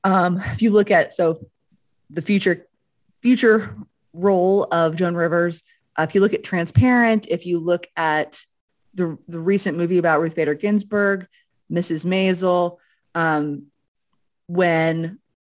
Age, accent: 30-49, American